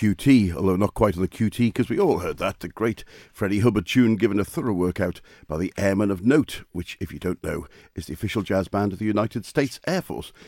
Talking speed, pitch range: 240 wpm, 90-115 Hz